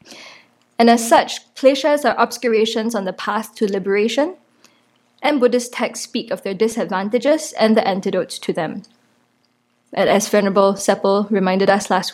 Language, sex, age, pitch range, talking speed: English, female, 20-39, 195-245 Hz, 150 wpm